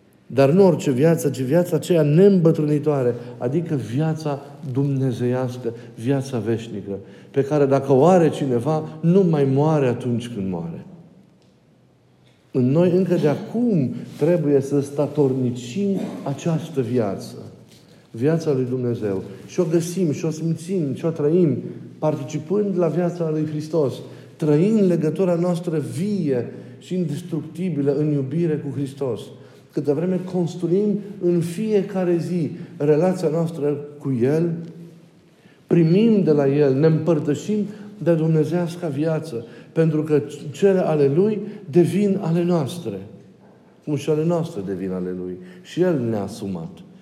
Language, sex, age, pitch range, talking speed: Romanian, male, 50-69, 135-170 Hz, 130 wpm